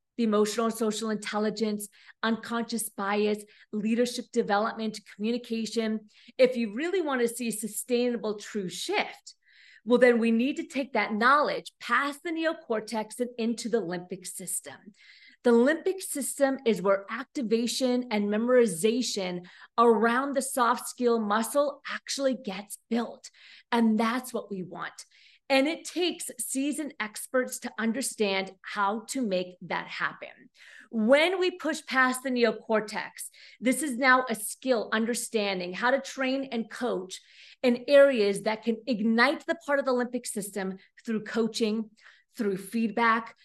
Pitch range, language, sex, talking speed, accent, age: 215-265 Hz, English, female, 140 wpm, American, 40-59